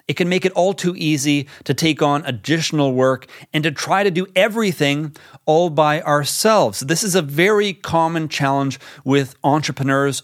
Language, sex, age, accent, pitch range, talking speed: English, male, 30-49, American, 140-185 Hz, 170 wpm